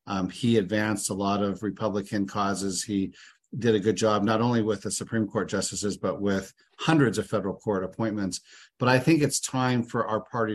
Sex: male